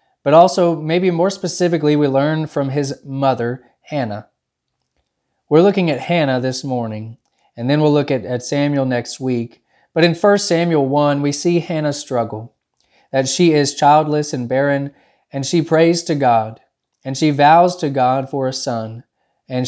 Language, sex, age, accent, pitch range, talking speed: English, male, 20-39, American, 130-155 Hz, 170 wpm